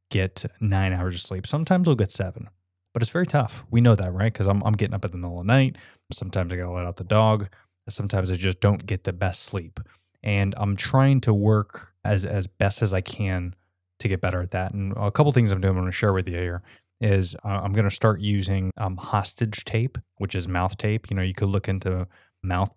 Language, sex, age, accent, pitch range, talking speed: English, male, 20-39, American, 95-110 Hz, 250 wpm